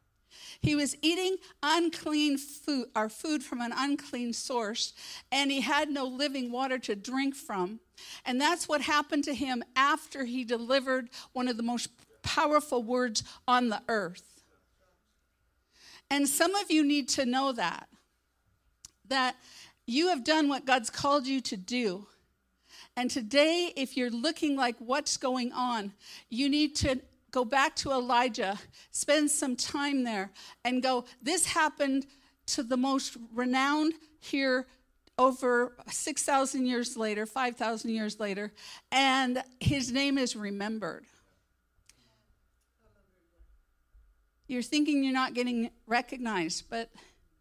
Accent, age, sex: American, 50-69, female